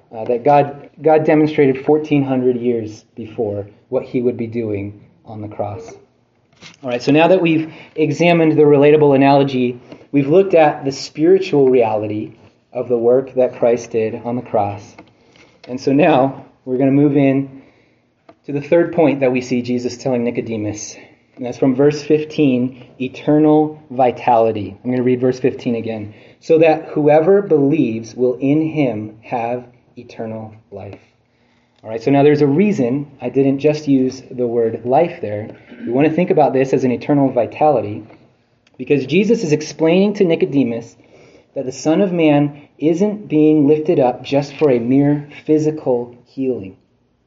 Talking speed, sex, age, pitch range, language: 160 wpm, male, 30-49, 120-155 Hz, English